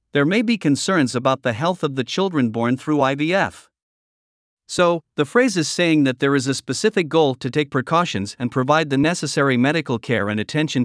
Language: Vietnamese